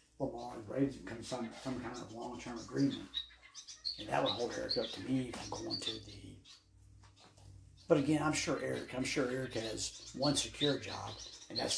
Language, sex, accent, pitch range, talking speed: English, male, American, 110-130 Hz, 200 wpm